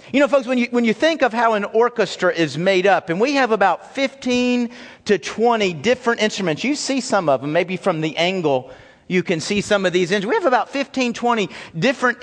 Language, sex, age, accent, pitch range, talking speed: English, male, 50-69, American, 180-250 Hz, 220 wpm